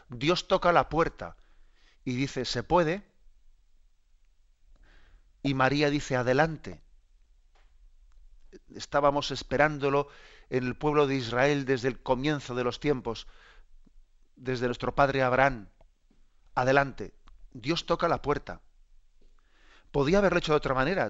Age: 40-59